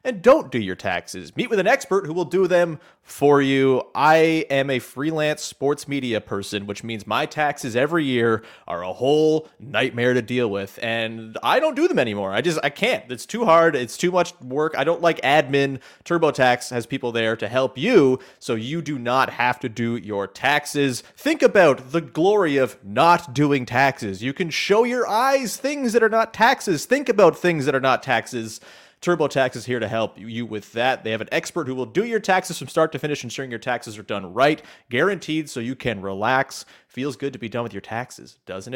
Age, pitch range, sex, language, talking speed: 30-49, 115-160 Hz, male, English, 215 wpm